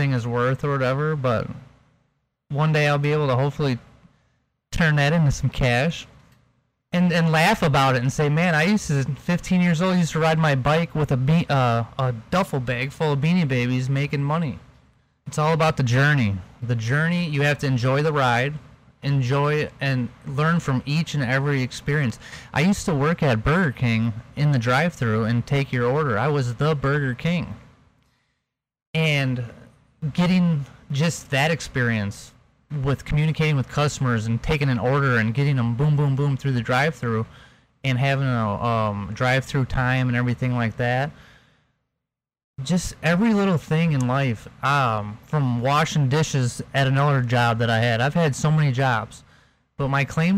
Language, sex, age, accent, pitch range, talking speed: English, male, 30-49, American, 125-150 Hz, 175 wpm